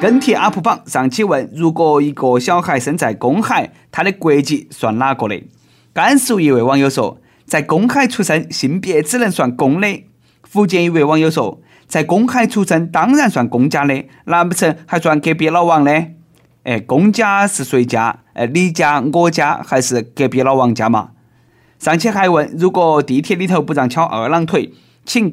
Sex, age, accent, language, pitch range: male, 20-39, native, Chinese, 130-195 Hz